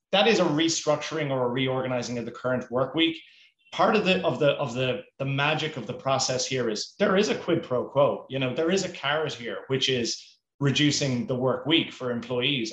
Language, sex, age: English, male, 30-49